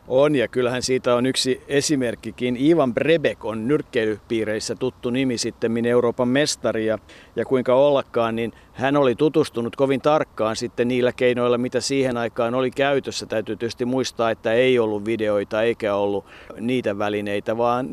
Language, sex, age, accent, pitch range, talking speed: Finnish, male, 50-69, native, 110-135 Hz, 155 wpm